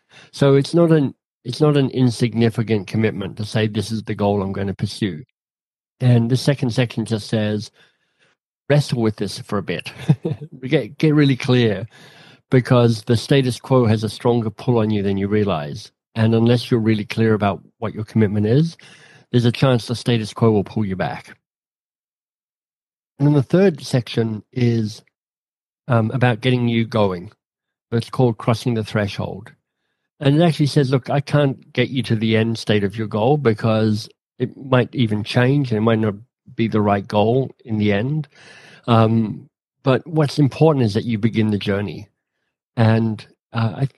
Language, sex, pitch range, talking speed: English, male, 110-130 Hz, 175 wpm